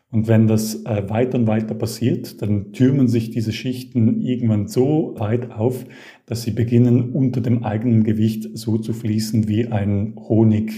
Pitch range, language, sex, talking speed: 110-125 Hz, German, male, 165 wpm